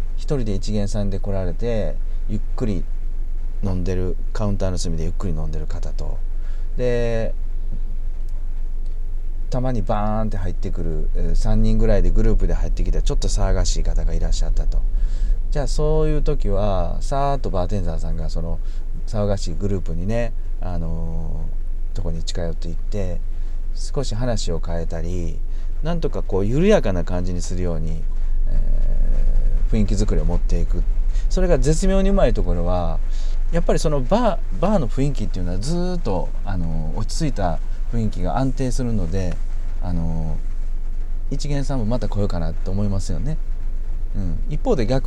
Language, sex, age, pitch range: Japanese, male, 40-59, 85-105 Hz